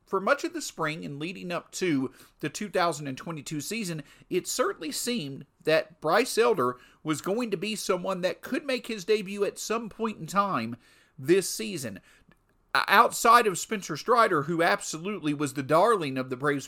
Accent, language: American, English